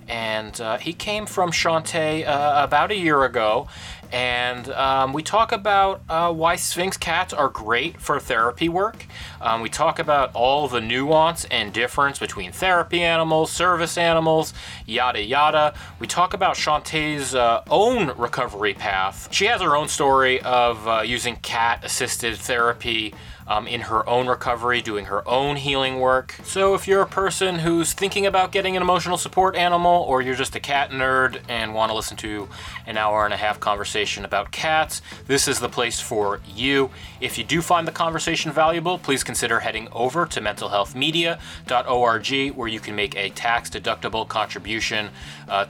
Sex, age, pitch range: male, 30-49, 115-165 Hz